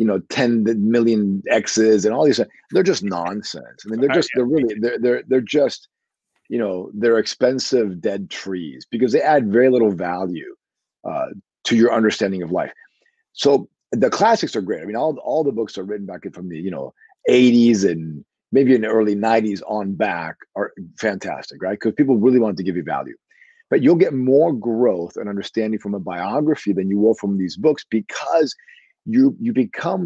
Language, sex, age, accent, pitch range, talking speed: English, male, 40-59, American, 100-135 Hz, 195 wpm